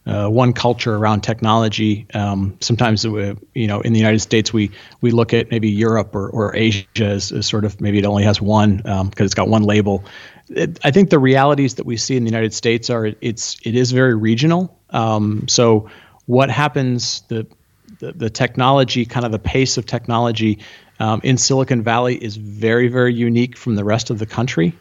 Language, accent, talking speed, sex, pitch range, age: Hebrew, American, 210 wpm, male, 105-125 Hz, 40-59